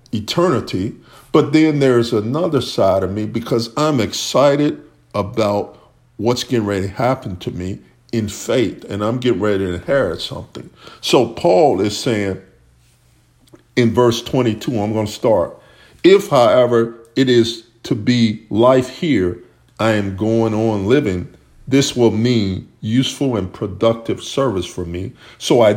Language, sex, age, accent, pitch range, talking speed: English, male, 50-69, American, 105-130 Hz, 145 wpm